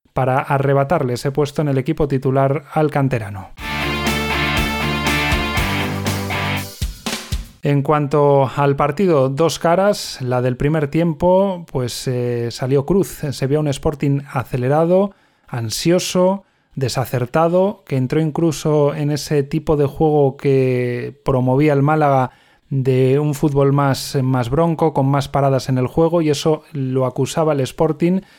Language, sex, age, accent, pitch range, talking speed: Spanish, male, 30-49, Spanish, 135-160 Hz, 130 wpm